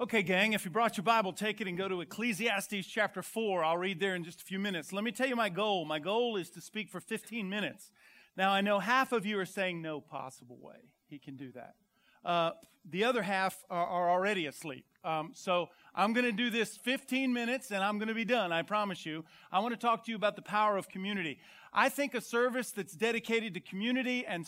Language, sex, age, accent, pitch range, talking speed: English, male, 40-59, American, 175-225 Hz, 240 wpm